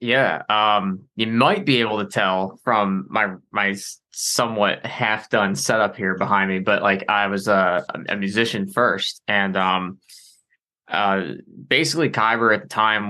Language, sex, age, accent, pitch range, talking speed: English, male, 20-39, American, 95-110 Hz, 155 wpm